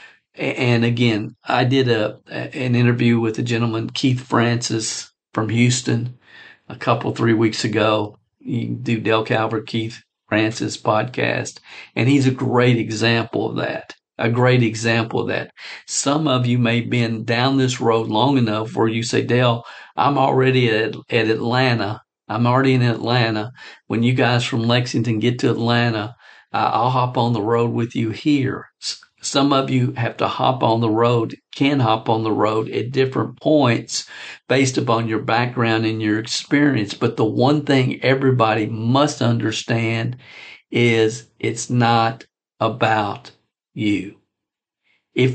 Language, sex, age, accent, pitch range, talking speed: English, male, 50-69, American, 110-130 Hz, 155 wpm